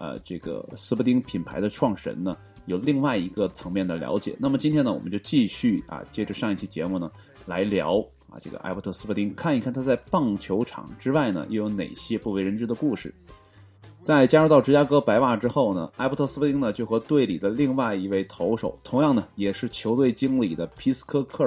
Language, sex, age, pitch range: Chinese, male, 20-39, 100-135 Hz